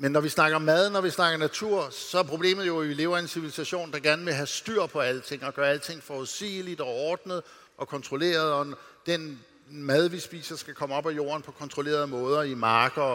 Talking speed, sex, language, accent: 230 wpm, male, English, Danish